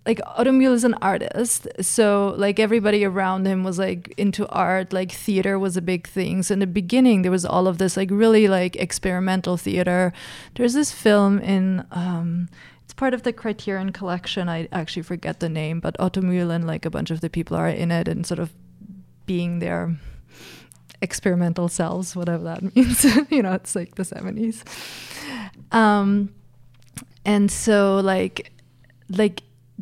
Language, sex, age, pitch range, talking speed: English, female, 20-39, 175-210 Hz, 170 wpm